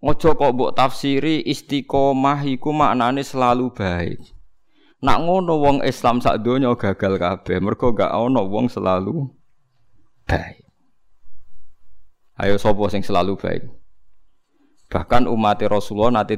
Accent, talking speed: native, 105 wpm